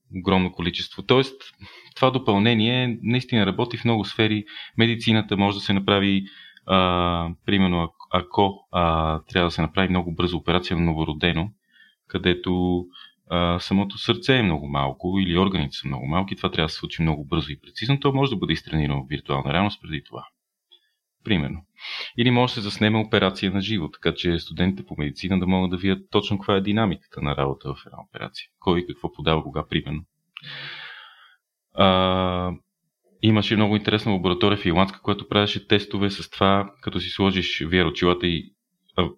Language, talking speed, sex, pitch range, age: Bulgarian, 165 wpm, male, 90-105 Hz, 30-49